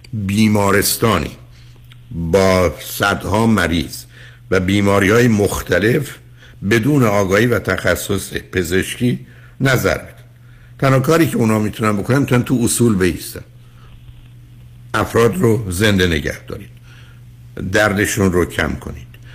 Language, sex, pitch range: Persian, male, 90-120 Hz